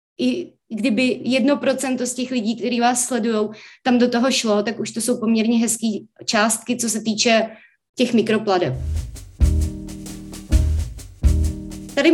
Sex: female